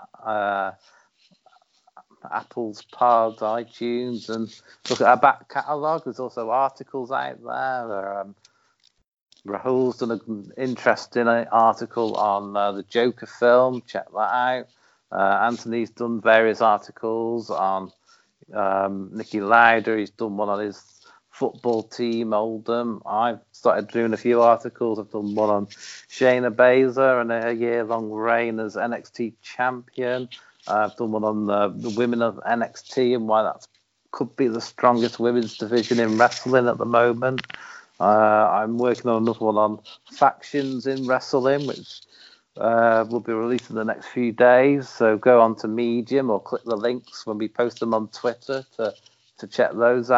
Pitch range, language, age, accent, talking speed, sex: 110-125 Hz, English, 40-59, British, 155 wpm, male